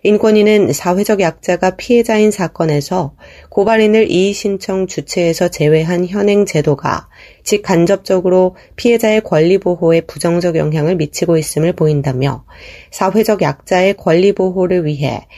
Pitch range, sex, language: 155-200 Hz, female, Korean